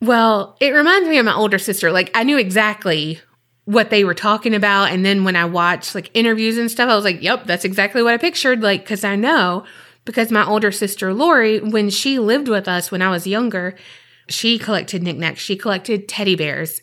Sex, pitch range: female, 175-225 Hz